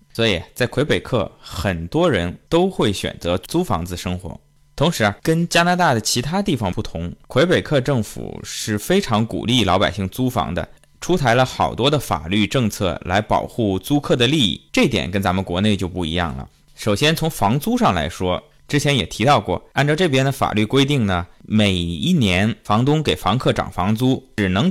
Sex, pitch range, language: male, 95-140 Hz, Chinese